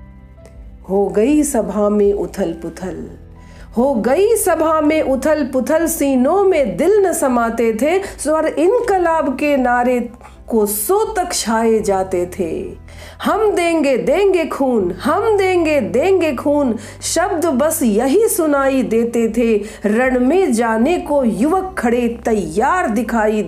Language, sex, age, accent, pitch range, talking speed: Hindi, female, 50-69, native, 215-325 Hz, 125 wpm